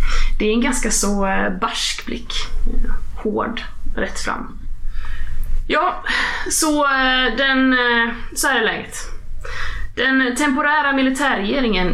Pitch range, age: 180-255 Hz, 20-39